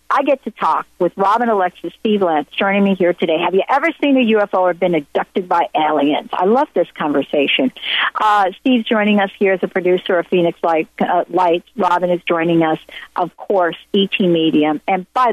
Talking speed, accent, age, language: 195 wpm, American, 50-69, English